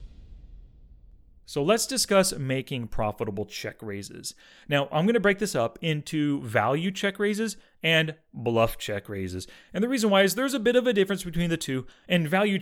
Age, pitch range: 30-49, 115-180 Hz